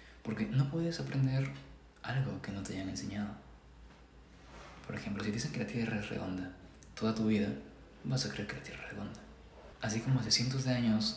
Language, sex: Spanish, male